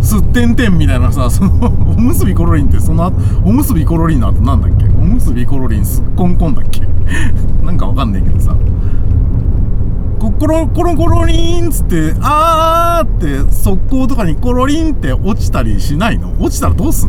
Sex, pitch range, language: male, 90-105 Hz, Japanese